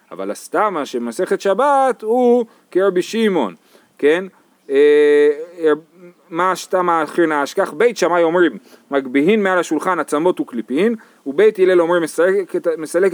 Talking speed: 110 wpm